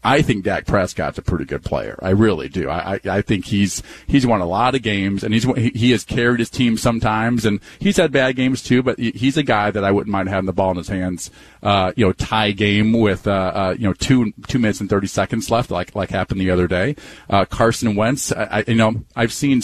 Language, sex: English, male